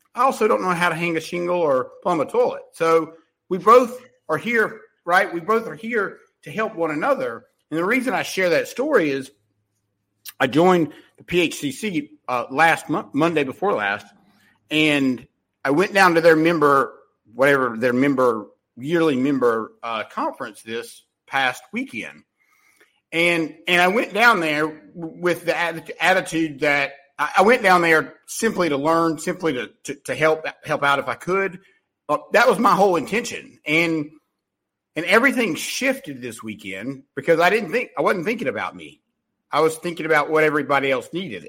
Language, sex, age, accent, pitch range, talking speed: English, male, 50-69, American, 145-205 Hz, 170 wpm